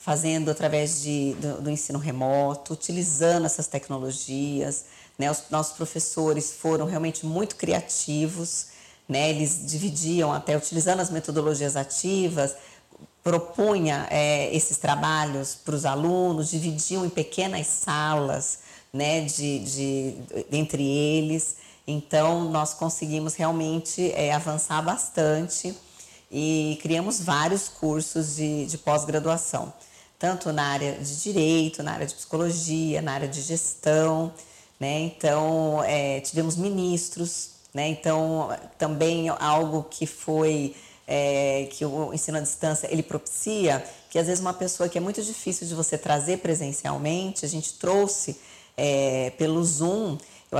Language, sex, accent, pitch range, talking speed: Portuguese, female, Brazilian, 150-165 Hz, 115 wpm